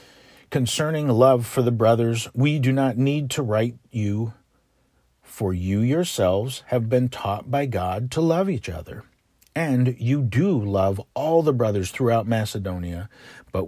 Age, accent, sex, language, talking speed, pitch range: 50-69, American, male, English, 150 wpm, 105-135 Hz